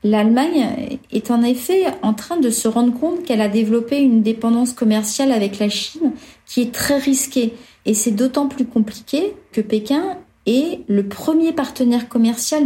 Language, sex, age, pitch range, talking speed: French, female, 40-59, 215-270 Hz, 165 wpm